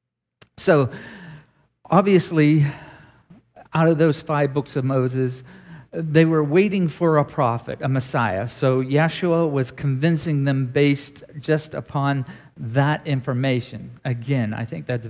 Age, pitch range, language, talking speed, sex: 50-69, 130-160 Hz, English, 125 wpm, male